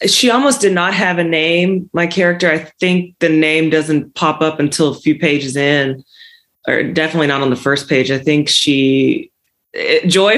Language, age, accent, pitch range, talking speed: English, 20-39, American, 140-170 Hz, 185 wpm